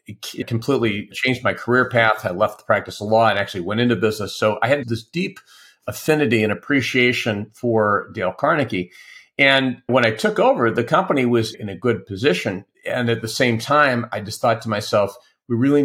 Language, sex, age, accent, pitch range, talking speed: English, male, 40-59, American, 105-120 Hz, 195 wpm